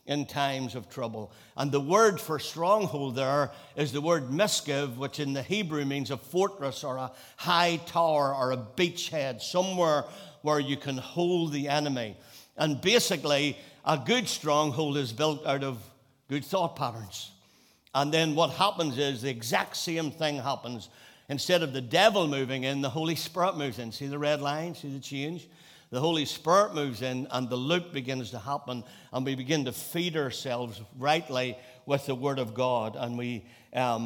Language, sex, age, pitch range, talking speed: English, male, 60-79, 130-165 Hz, 180 wpm